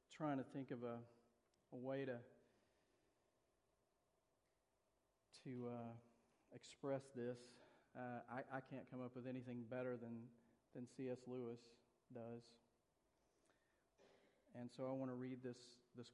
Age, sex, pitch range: 40-59, male, 125-155 Hz